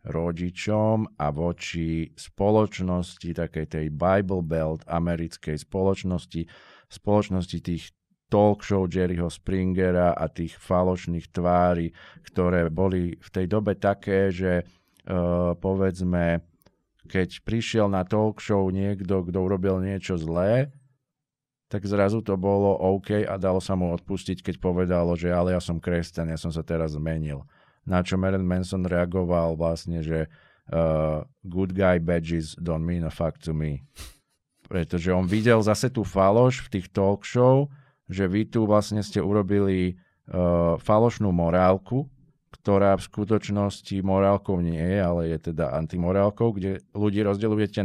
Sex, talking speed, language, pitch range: male, 140 wpm, Slovak, 85-100 Hz